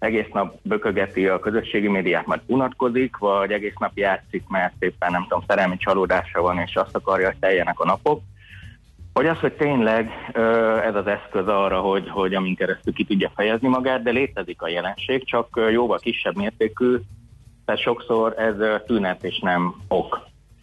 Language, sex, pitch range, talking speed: Hungarian, male, 95-120 Hz, 165 wpm